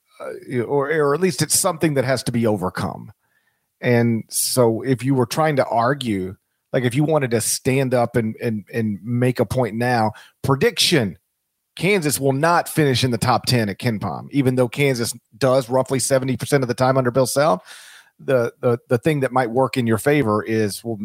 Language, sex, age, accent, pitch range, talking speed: English, male, 40-59, American, 110-135 Hz, 200 wpm